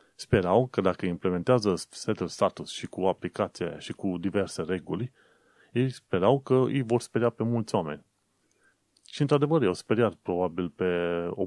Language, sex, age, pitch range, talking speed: Romanian, male, 30-49, 95-120 Hz, 150 wpm